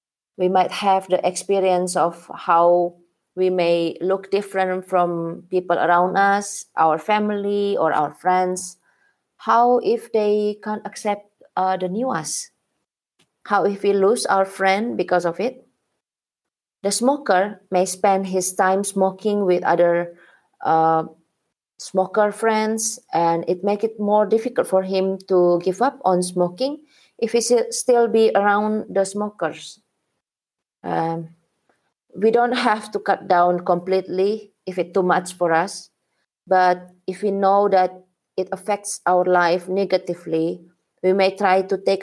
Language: English